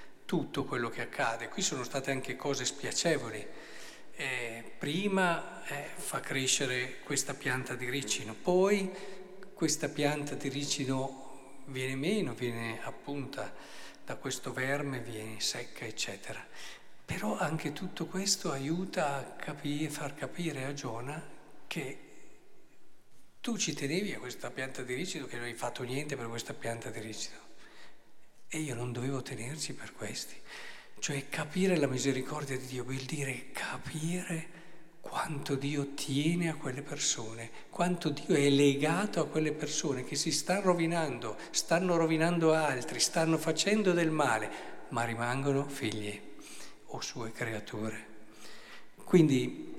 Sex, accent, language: male, native, Italian